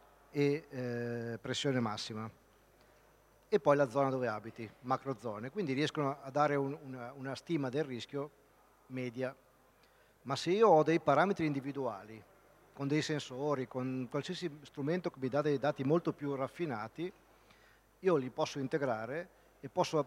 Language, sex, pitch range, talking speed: Italian, male, 130-160 Hz, 145 wpm